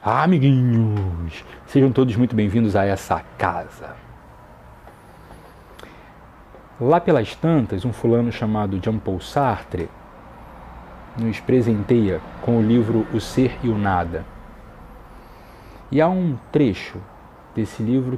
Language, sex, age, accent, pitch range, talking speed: Portuguese, male, 40-59, Brazilian, 95-130 Hz, 110 wpm